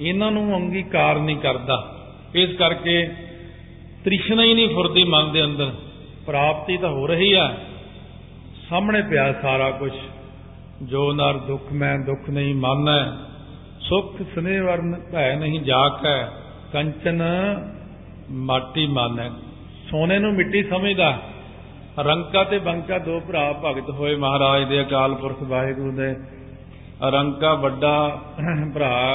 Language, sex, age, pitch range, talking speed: Punjabi, male, 50-69, 140-170 Hz, 95 wpm